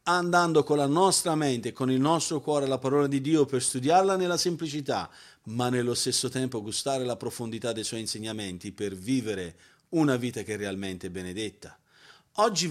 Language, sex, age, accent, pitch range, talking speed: Italian, male, 40-59, native, 125-170 Hz, 170 wpm